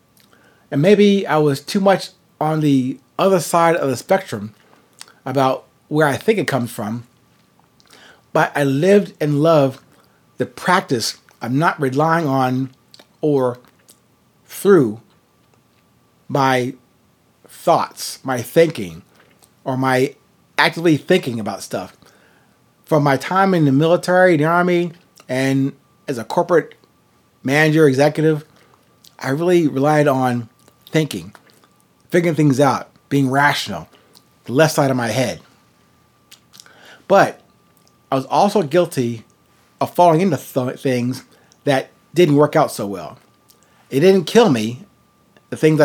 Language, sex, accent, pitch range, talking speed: English, male, American, 130-165 Hz, 125 wpm